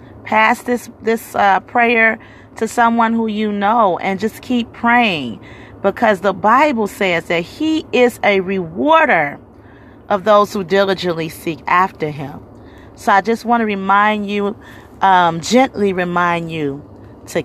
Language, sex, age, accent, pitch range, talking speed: English, female, 40-59, American, 145-215 Hz, 145 wpm